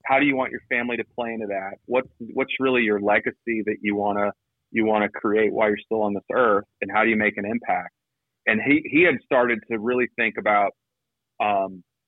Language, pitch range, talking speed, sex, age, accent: English, 105-130 Hz, 220 wpm, male, 30-49, American